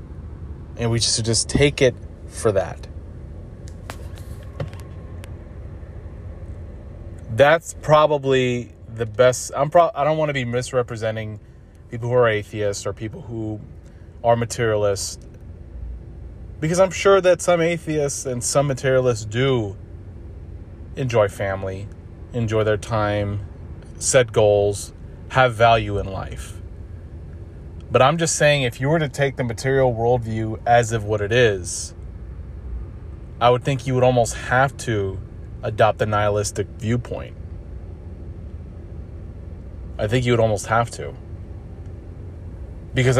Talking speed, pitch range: 120 wpm, 85-120 Hz